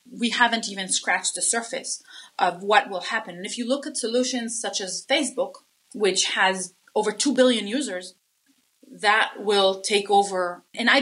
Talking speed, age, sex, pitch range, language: 170 wpm, 30-49, female, 200-260 Hz, English